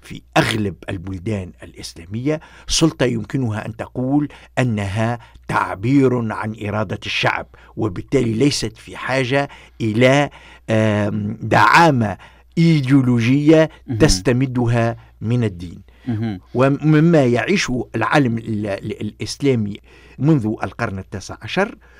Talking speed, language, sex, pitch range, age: 85 wpm, Arabic, male, 105-135 Hz, 50-69